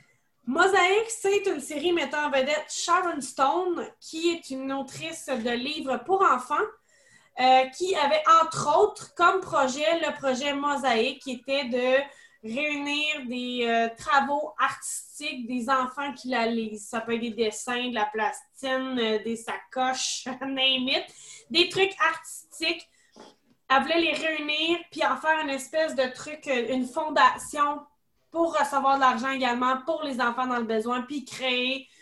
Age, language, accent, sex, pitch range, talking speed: 20-39, French, Canadian, female, 255-310 Hz, 150 wpm